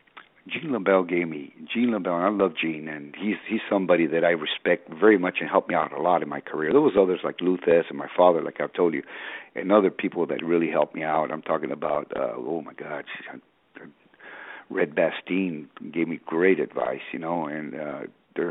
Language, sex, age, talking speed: English, male, 50-69, 215 wpm